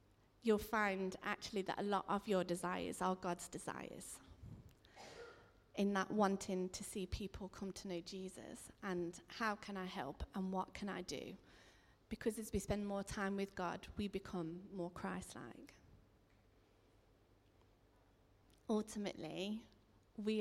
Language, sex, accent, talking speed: English, female, British, 135 wpm